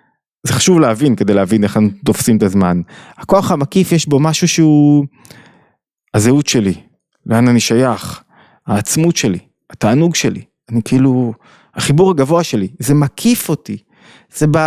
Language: Hebrew